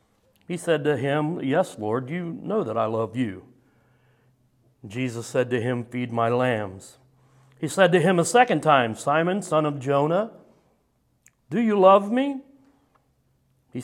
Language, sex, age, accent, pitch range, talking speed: English, male, 60-79, American, 120-170 Hz, 150 wpm